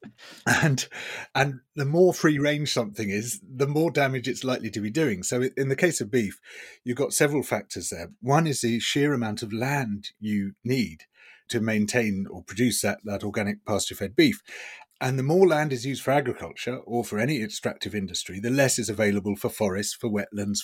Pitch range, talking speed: 105-140 Hz, 190 wpm